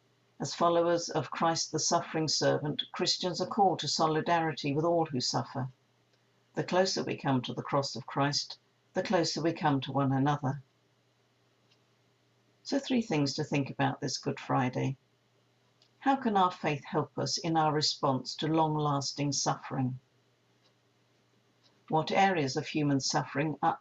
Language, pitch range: English, 135-165 Hz